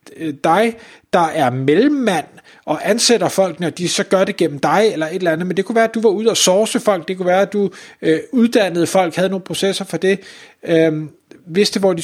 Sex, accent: male, native